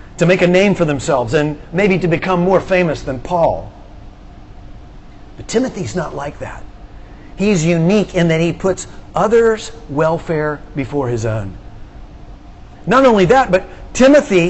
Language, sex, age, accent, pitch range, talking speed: English, male, 40-59, American, 145-190 Hz, 145 wpm